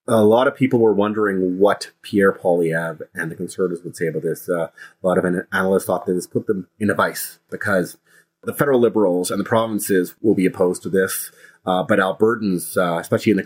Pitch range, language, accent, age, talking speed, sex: 95-110 Hz, English, American, 30-49, 215 wpm, male